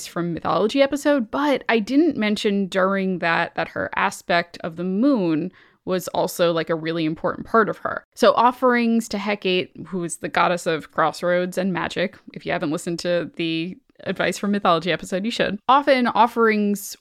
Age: 10-29